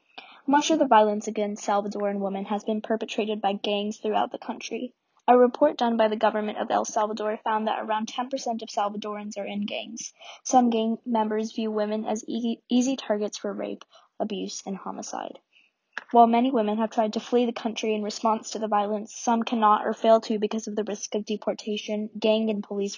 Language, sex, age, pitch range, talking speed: English, female, 20-39, 210-235 Hz, 195 wpm